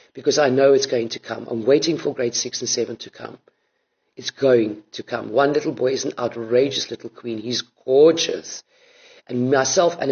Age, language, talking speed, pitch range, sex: 50-69, English, 195 wpm, 125-185 Hz, female